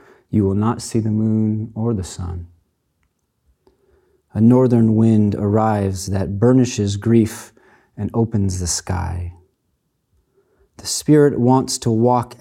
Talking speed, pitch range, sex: 120 wpm, 95-115 Hz, male